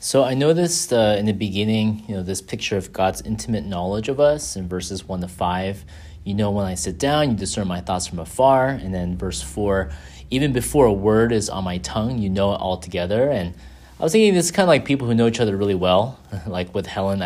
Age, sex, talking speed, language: 30-49, male, 245 wpm, English